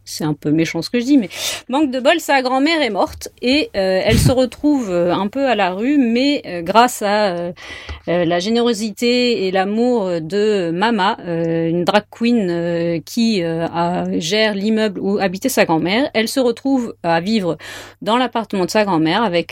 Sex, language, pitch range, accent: female, French, 170-235 Hz, French